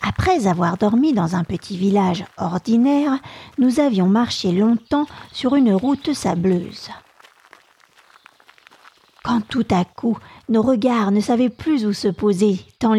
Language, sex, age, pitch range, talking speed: French, female, 50-69, 190-255 Hz, 135 wpm